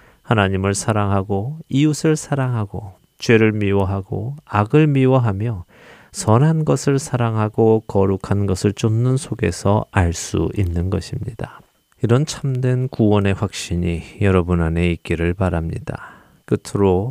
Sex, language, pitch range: male, Korean, 95-125 Hz